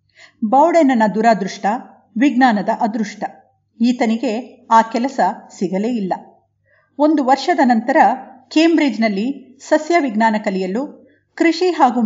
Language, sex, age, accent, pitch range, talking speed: Kannada, female, 50-69, native, 215-275 Hz, 85 wpm